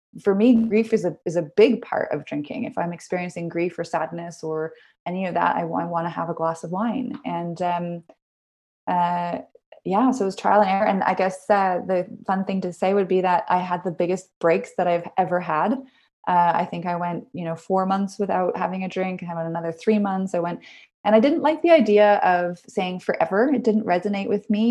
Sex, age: female, 20-39